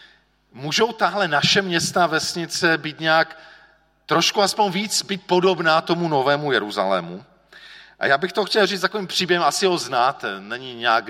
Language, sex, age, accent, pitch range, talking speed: Czech, male, 40-59, native, 145-180 Hz, 150 wpm